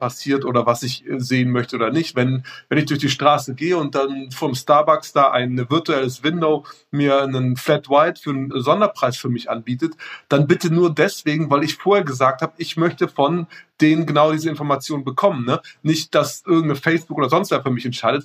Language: German